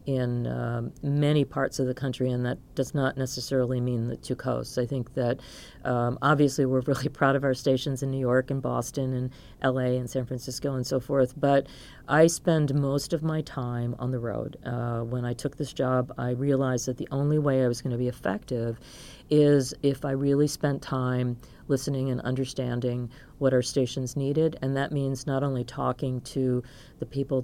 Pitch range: 125-145 Hz